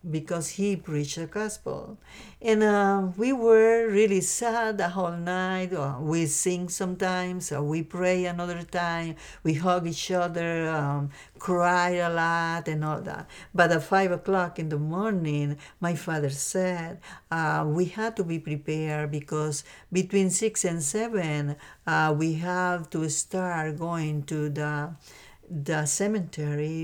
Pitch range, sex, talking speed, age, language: 160-200 Hz, female, 140 wpm, 50-69, English